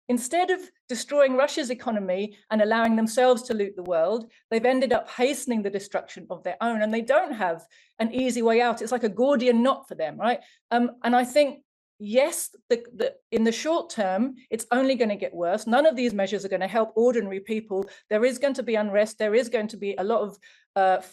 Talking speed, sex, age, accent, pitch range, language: 220 wpm, female, 40-59, British, 190-245 Hz, English